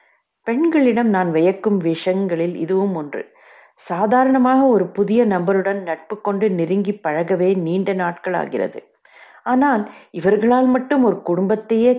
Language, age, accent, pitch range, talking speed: Tamil, 60-79, native, 180-225 Hz, 110 wpm